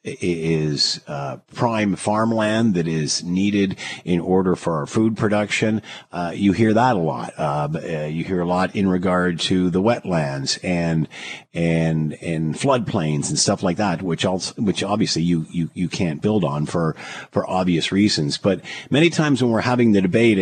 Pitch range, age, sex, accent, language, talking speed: 90-120 Hz, 50-69, male, American, English, 175 wpm